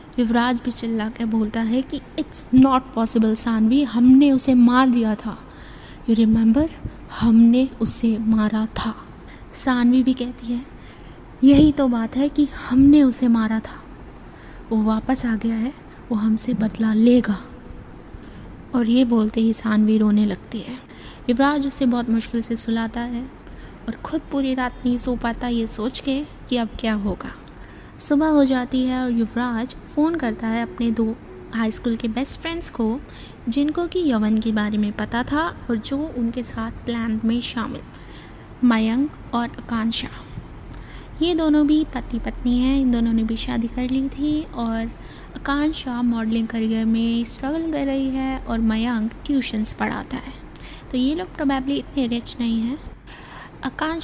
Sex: female